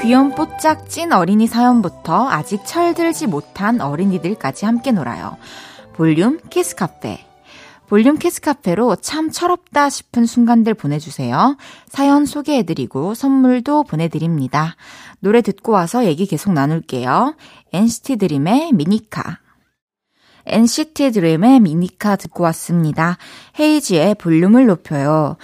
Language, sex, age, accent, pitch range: Korean, female, 20-39, native, 165-250 Hz